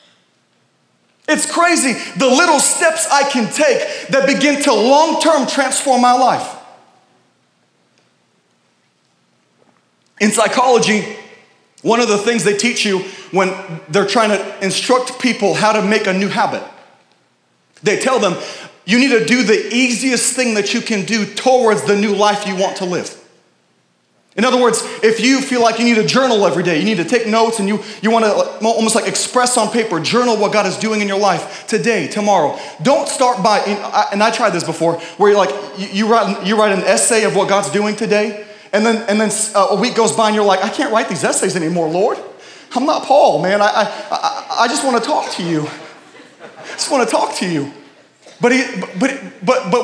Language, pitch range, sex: English, 200-250 Hz, male